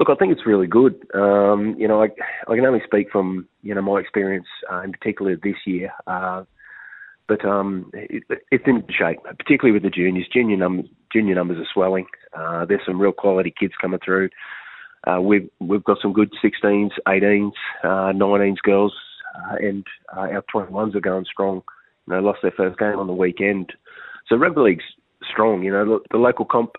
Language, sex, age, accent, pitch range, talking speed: English, male, 20-39, Australian, 95-105 Hz, 195 wpm